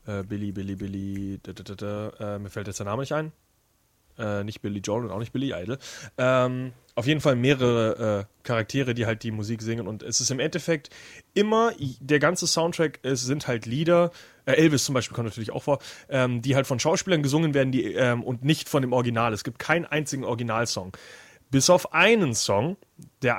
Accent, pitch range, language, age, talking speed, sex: German, 120-155 Hz, German, 30-49, 185 wpm, male